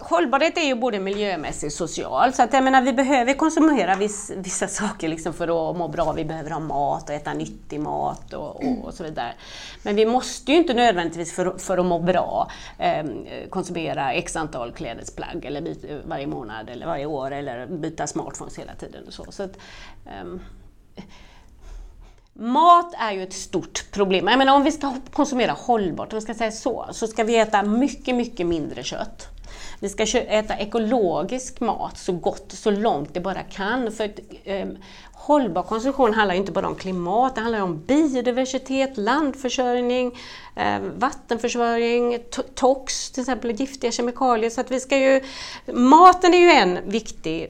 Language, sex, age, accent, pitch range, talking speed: Swedish, female, 30-49, native, 185-260 Hz, 175 wpm